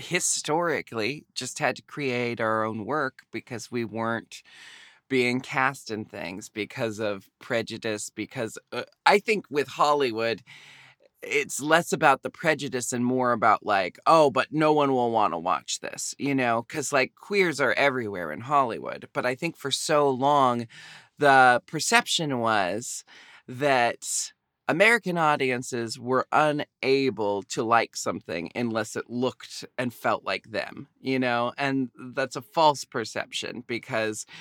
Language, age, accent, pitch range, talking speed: English, 20-39, American, 115-140 Hz, 145 wpm